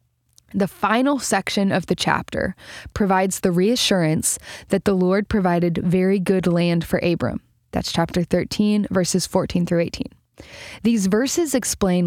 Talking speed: 140 wpm